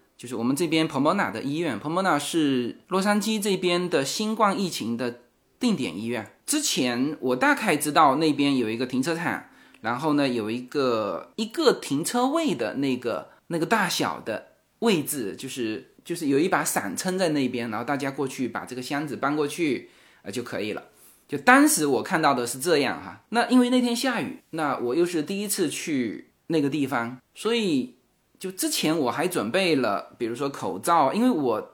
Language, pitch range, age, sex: Chinese, 140-205 Hz, 20-39, male